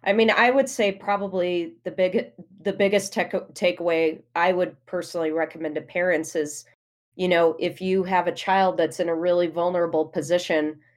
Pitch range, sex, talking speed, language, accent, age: 155-190 Hz, female, 170 wpm, English, American, 30-49